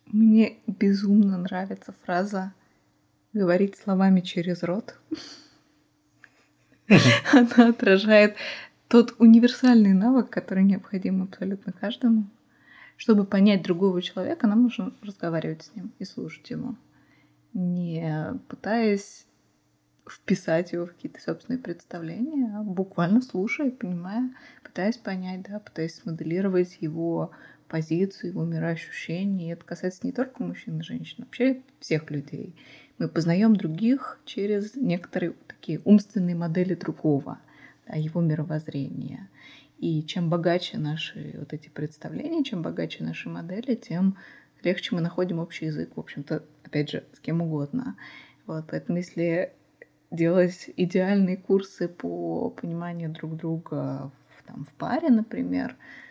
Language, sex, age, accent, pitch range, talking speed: Russian, female, 20-39, native, 165-220 Hz, 120 wpm